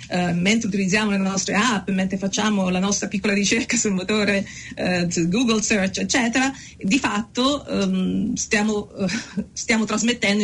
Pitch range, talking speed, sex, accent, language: 190-225 Hz, 120 wpm, female, native, Italian